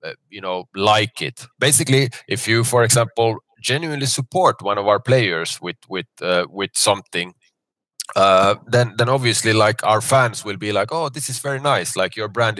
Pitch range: 95-125 Hz